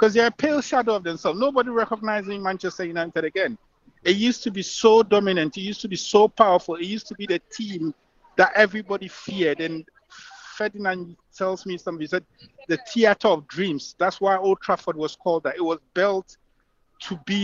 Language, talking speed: English, 190 wpm